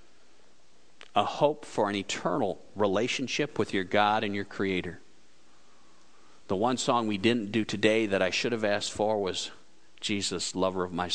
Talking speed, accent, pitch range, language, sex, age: 160 wpm, American, 100-120 Hz, English, male, 50-69